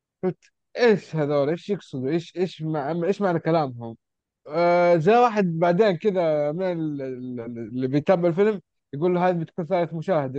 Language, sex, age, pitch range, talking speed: Arabic, male, 20-39, 145-190 Hz, 150 wpm